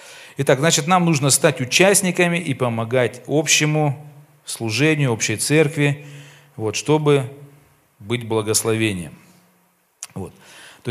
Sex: male